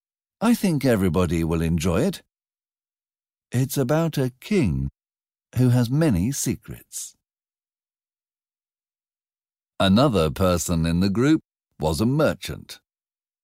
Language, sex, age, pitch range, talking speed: Slovak, male, 50-69, 85-120 Hz, 100 wpm